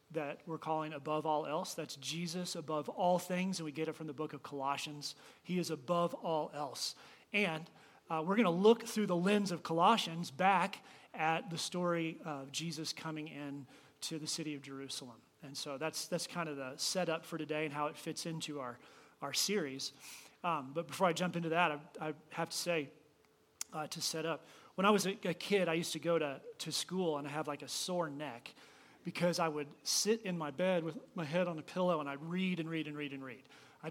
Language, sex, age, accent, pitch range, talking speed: English, male, 30-49, American, 150-180 Hz, 225 wpm